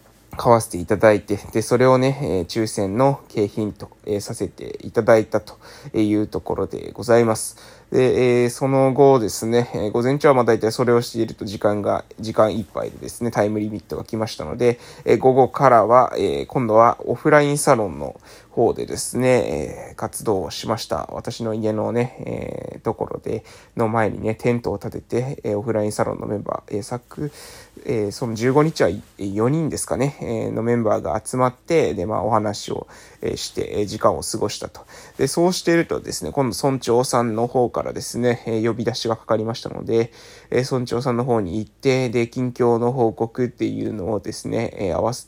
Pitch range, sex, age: 110-130 Hz, male, 20-39